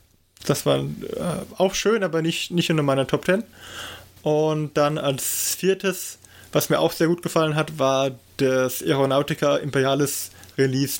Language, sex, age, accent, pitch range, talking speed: German, male, 20-39, German, 125-165 Hz, 155 wpm